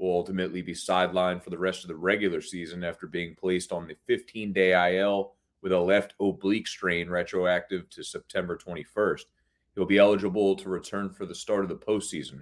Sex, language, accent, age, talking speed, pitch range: male, English, American, 30-49, 185 wpm, 90-105 Hz